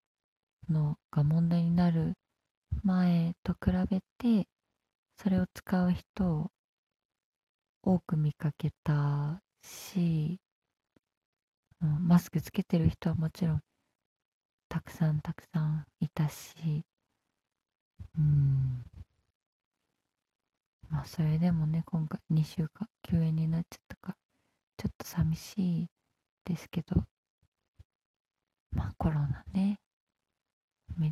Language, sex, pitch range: Japanese, female, 155-185 Hz